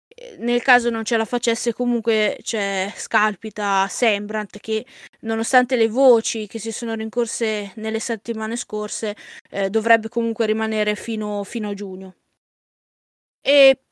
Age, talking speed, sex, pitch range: 20-39, 130 wpm, female, 215-245 Hz